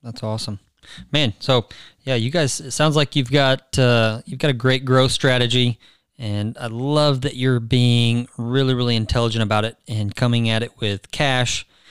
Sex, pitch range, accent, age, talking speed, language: male, 115-135 Hz, American, 20-39, 180 wpm, English